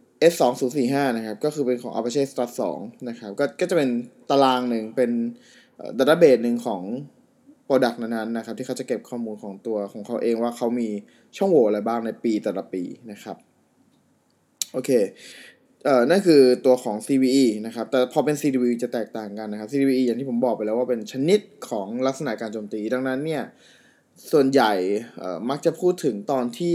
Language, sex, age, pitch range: Thai, male, 20-39, 115-140 Hz